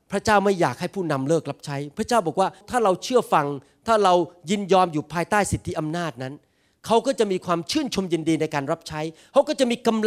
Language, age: Thai, 30-49